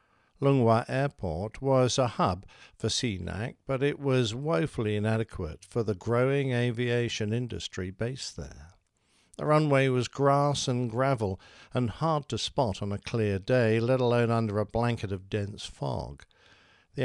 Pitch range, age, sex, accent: 105-130 Hz, 60-79, male, British